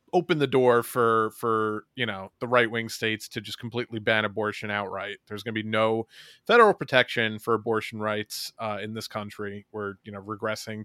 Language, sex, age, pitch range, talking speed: English, male, 30-49, 110-145 Hz, 190 wpm